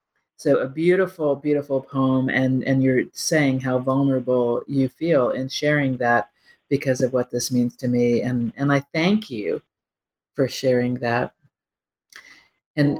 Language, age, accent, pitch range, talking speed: English, 40-59, American, 125-150 Hz, 150 wpm